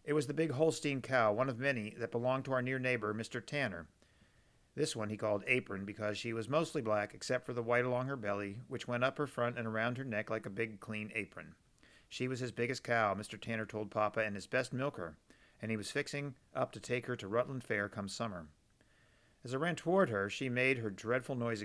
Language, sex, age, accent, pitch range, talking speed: English, male, 50-69, American, 105-130 Hz, 235 wpm